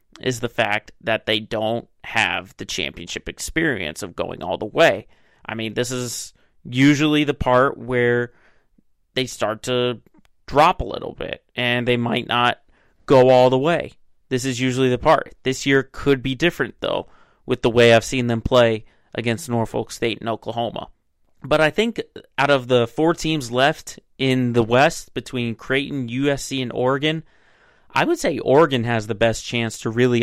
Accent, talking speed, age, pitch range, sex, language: American, 175 wpm, 30-49, 115-135 Hz, male, English